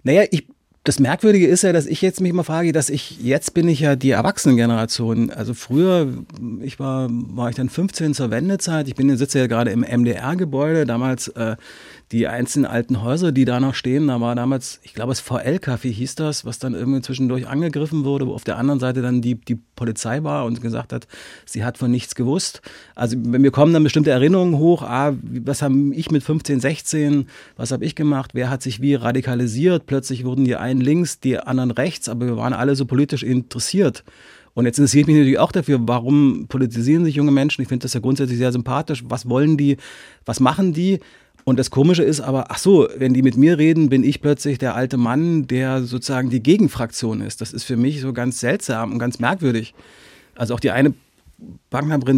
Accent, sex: German, male